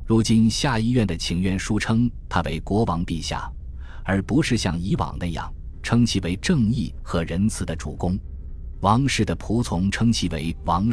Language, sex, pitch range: Chinese, male, 80-105 Hz